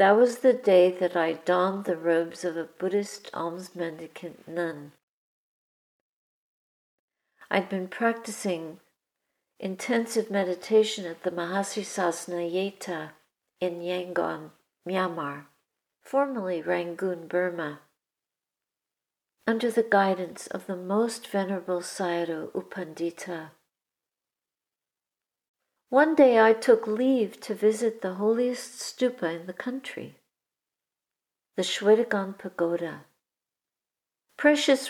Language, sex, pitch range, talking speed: English, female, 180-225 Hz, 95 wpm